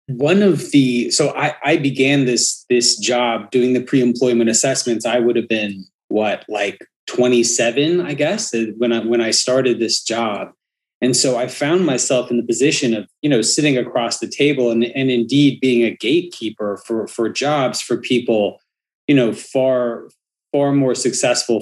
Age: 30-49